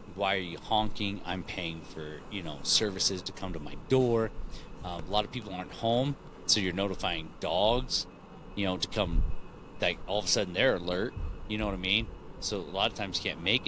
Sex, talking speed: male, 220 wpm